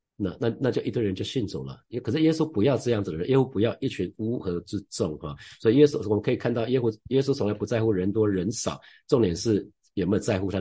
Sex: male